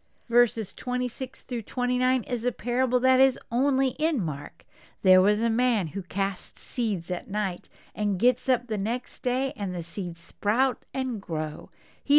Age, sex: 60-79, female